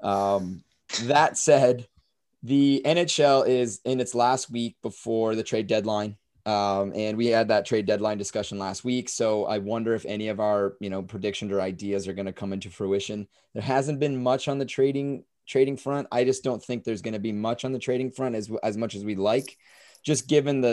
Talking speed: 210 wpm